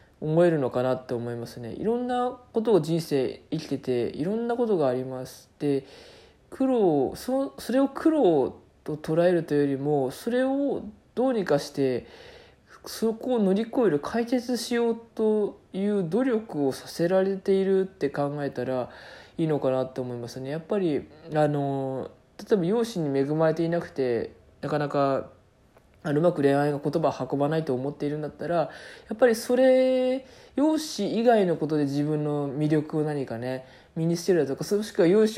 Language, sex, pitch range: Japanese, male, 140-230 Hz